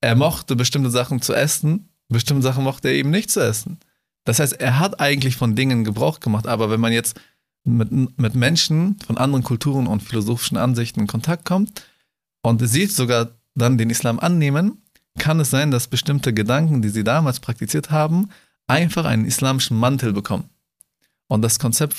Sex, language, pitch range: male, German, 110-145 Hz